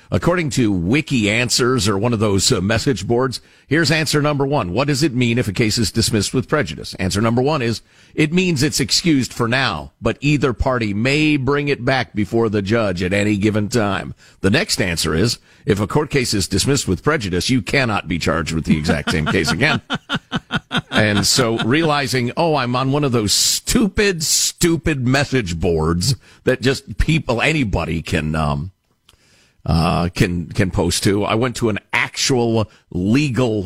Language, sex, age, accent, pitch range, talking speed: English, male, 50-69, American, 100-140 Hz, 180 wpm